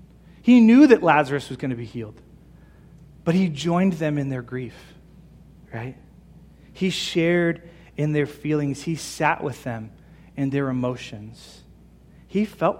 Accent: American